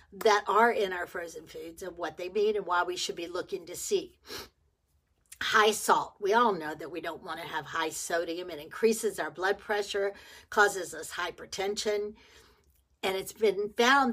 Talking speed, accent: 185 wpm, American